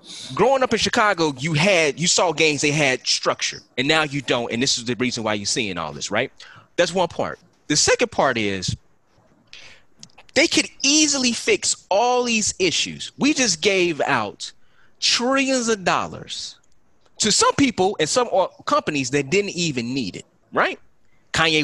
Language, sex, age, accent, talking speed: English, male, 30-49, American, 170 wpm